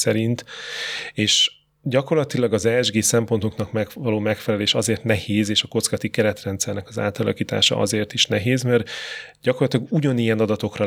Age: 30-49